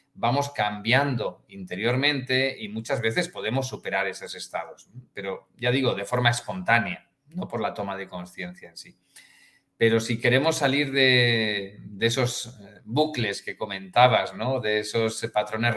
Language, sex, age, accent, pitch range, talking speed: Spanish, male, 40-59, Spanish, 105-135 Hz, 145 wpm